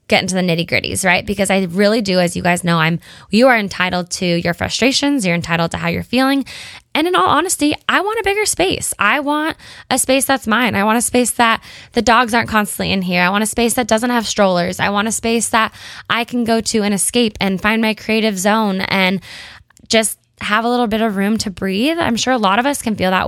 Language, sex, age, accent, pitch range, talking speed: English, female, 10-29, American, 180-240 Hz, 245 wpm